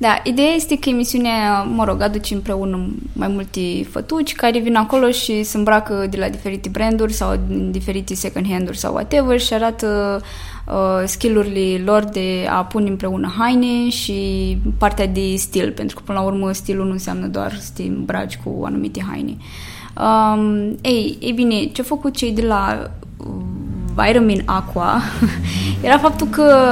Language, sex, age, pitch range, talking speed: Romanian, female, 20-39, 190-235 Hz, 160 wpm